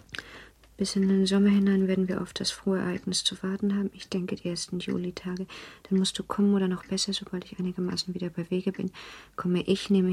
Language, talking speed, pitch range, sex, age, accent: German, 215 wpm, 175-195 Hz, female, 50-69, German